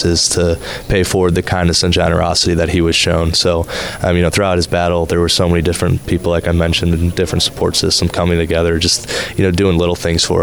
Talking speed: 235 wpm